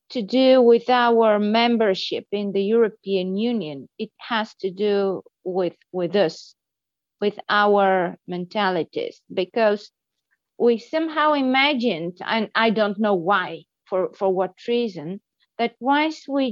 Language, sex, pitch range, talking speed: German, female, 205-260 Hz, 125 wpm